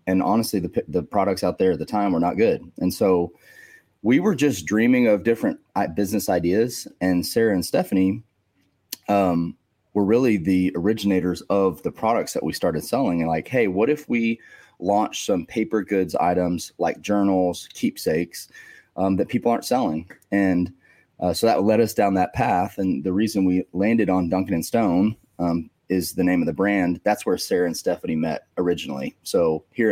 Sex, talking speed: male, 185 wpm